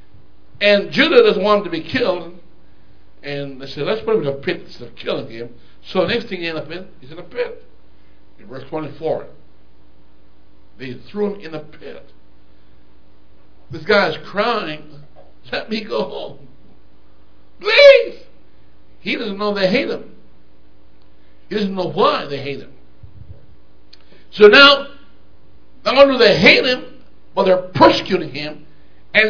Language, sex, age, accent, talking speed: English, male, 60-79, American, 160 wpm